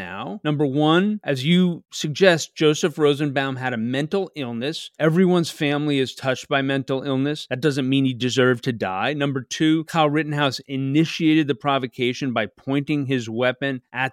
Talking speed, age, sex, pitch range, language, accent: 160 wpm, 40-59, male, 130-155 Hz, English, American